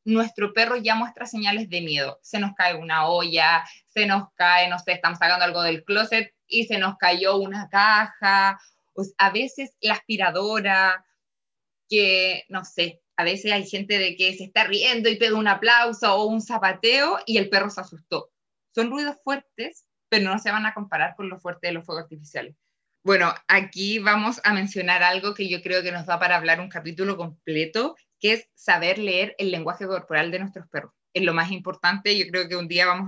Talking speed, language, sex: 200 wpm, Spanish, female